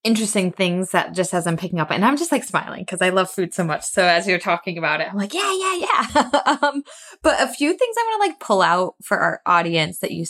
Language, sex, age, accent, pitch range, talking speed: English, female, 20-39, American, 170-215 Hz, 270 wpm